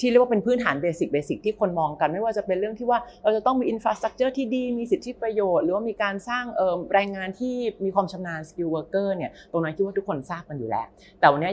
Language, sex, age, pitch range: Thai, female, 30-49, 155-215 Hz